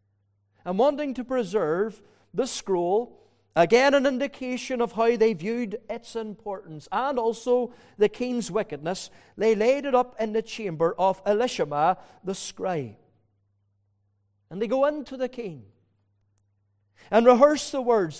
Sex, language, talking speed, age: male, English, 135 wpm, 40-59